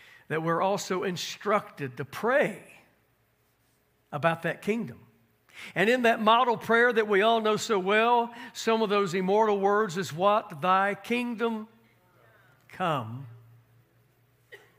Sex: male